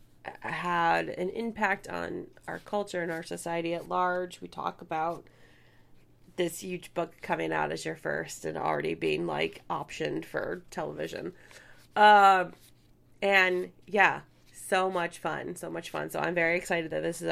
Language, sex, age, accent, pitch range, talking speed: English, female, 20-39, American, 165-205 Hz, 155 wpm